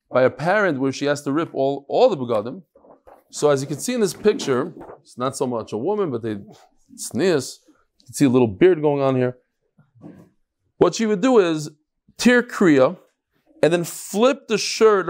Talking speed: 200 wpm